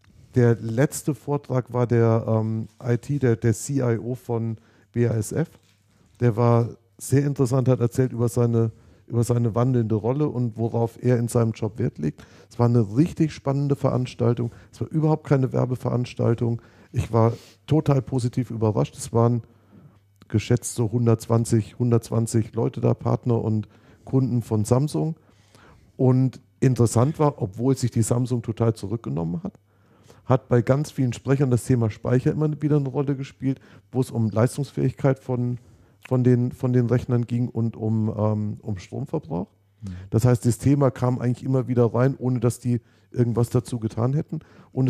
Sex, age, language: male, 50-69, German